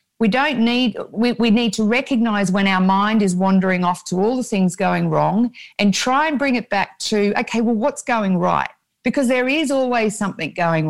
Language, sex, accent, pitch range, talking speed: English, female, Australian, 185-225 Hz, 210 wpm